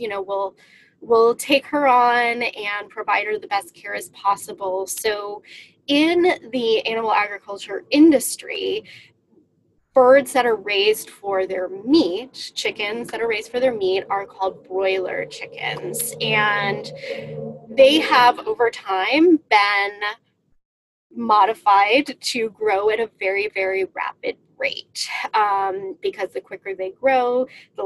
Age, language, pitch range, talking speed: 20-39, English, 190-285 Hz, 130 wpm